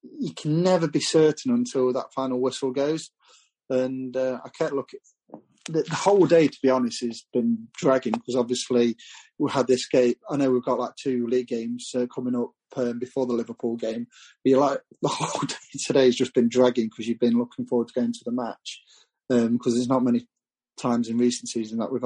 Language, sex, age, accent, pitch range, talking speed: English, male, 30-49, British, 120-150 Hz, 215 wpm